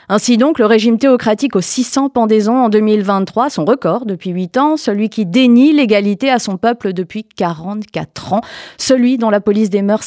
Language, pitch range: French, 165-220 Hz